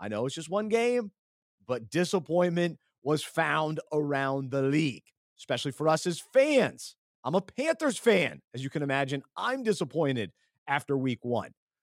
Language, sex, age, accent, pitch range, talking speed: English, male, 30-49, American, 135-175 Hz, 155 wpm